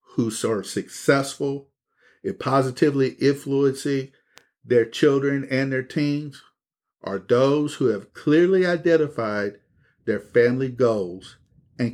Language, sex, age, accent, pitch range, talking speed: English, male, 50-69, American, 115-140 Hz, 105 wpm